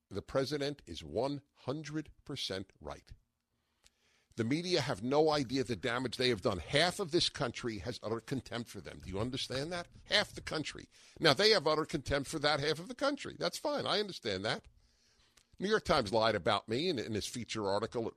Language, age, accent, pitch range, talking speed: English, 50-69, American, 115-155 Hz, 195 wpm